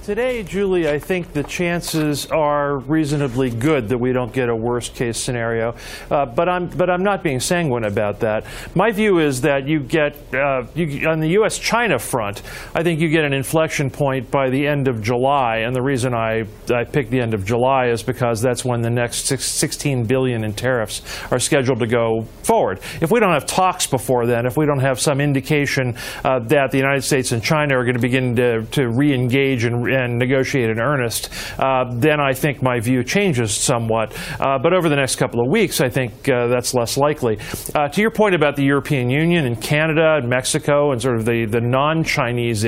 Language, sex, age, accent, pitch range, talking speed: English, male, 40-59, American, 120-150 Hz, 210 wpm